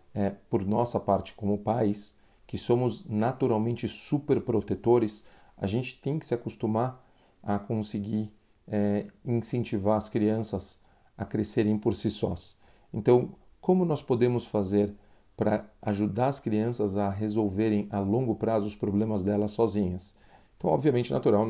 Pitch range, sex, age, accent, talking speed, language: 105-150 Hz, male, 40-59, Brazilian, 135 wpm, Portuguese